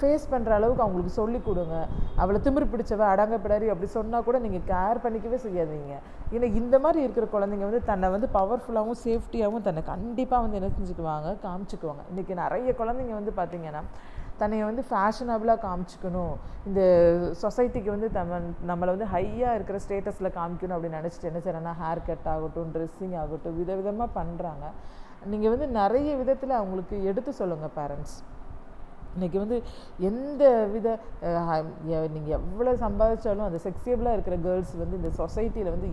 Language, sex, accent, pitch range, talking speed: Tamil, female, native, 170-230 Hz, 140 wpm